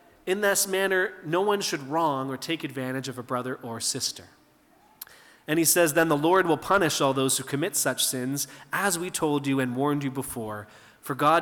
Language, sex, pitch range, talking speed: English, male, 130-170 Hz, 205 wpm